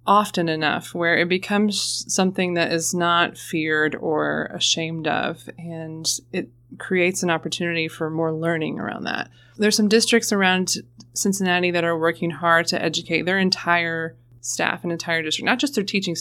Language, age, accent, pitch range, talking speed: English, 20-39, American, 160-190 Hz, 165 wpm